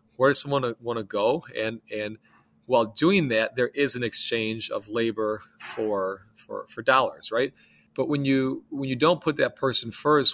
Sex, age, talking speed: male, 40-59, 185 wpm